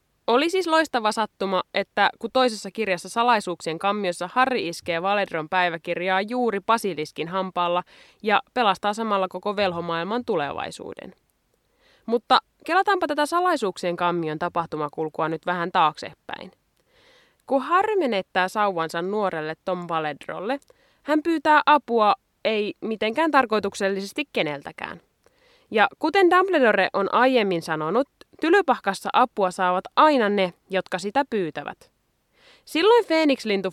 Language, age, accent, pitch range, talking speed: Finnish, 20-39, native, 180-265 Hz, 110 wpm